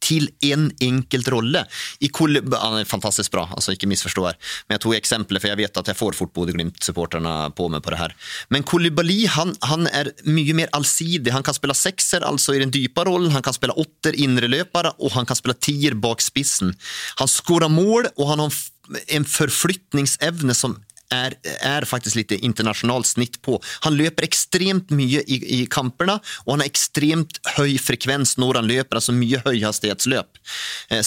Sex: male